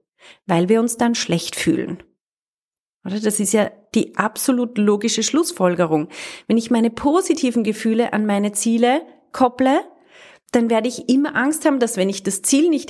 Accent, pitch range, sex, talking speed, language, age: German, 205-265 Hz, female, 165 wpm, German, 30-49